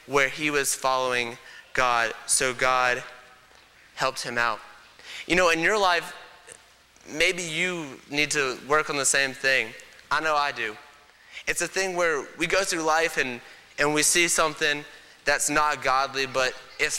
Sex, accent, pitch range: male, American, 125-155 Hz